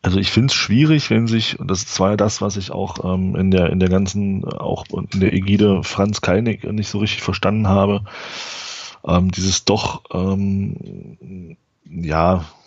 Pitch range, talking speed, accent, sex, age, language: 90-105 Hz, 175 wpm, German, male, 30-49, German